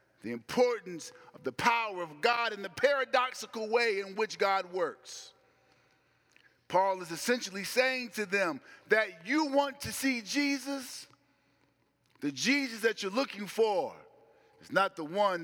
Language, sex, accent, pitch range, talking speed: English, male, American, 190-255 Hz, 145 wpm